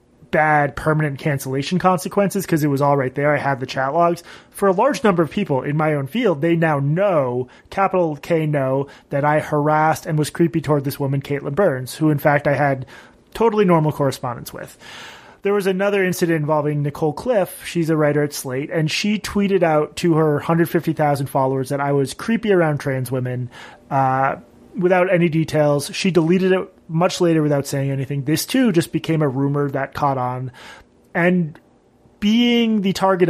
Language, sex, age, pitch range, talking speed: English, male, 30-49, 145-185 Hz, 190 wpm